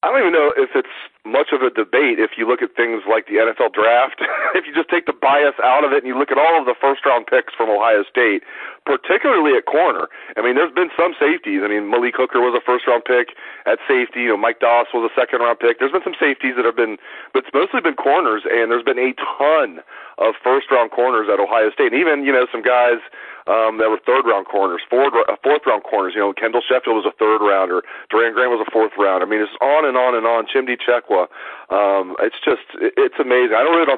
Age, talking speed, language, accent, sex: 40-59, 245 wpm, English, American, male